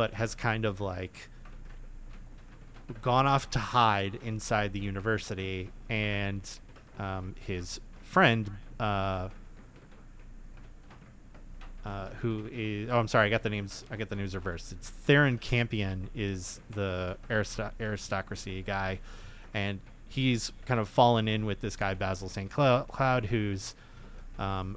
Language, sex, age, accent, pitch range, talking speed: English, male, 20-39, American, 100-120 Hz, 130 wpm